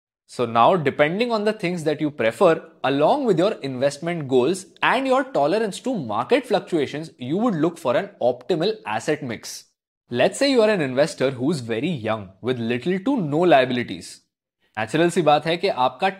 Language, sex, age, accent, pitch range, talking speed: Hindi, male, 20-39, native, 135-210 Hz, 180 wpm